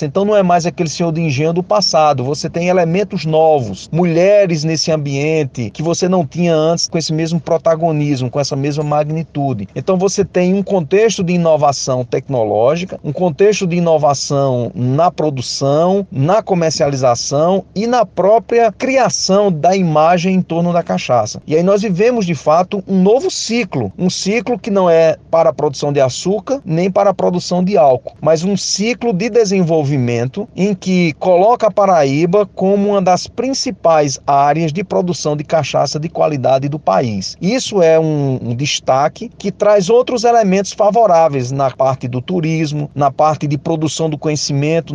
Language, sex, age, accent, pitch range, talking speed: Portuguese, male, 40-59, Brazilian, 145-190 Hz, 165 wpm